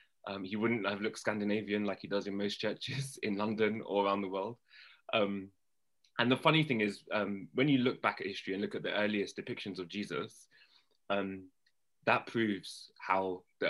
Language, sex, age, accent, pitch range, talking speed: English, male, 20-39, British, 95-115 Hz, 195 wpm